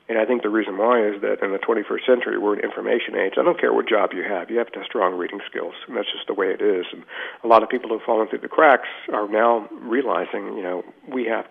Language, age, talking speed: English, 50-69, 285 wpm